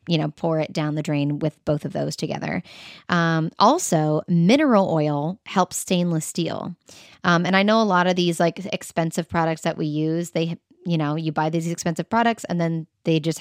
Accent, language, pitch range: American, English, 165-205 Hz